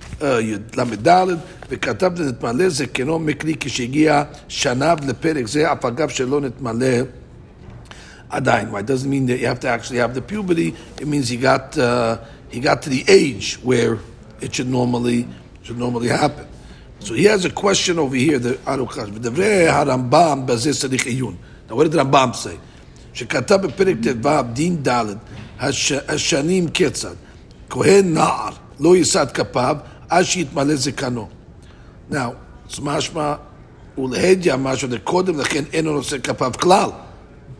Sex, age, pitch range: male, 50-69, 125-165 Hz